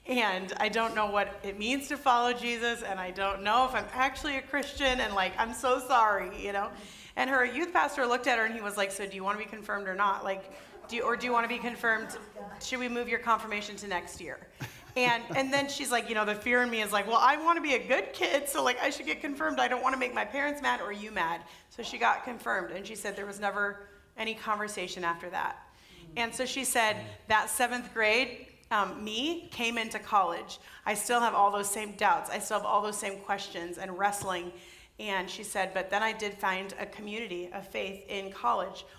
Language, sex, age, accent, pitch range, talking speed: English, female, 30-49, American, 195-245 Hz, 245 wpm